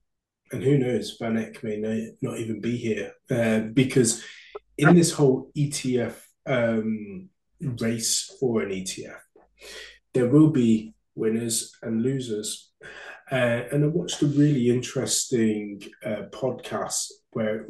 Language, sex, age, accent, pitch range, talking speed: English, male, 20-39, British, 110-130 Hz, 125 wpm